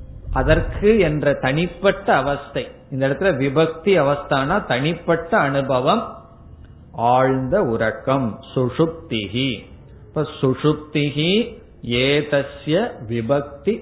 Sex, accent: male, native